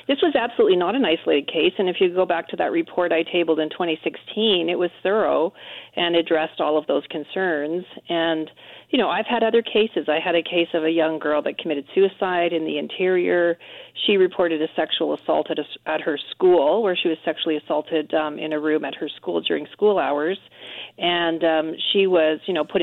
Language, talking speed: English, 215 wpm